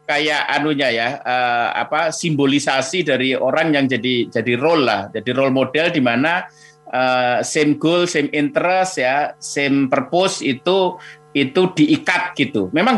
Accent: native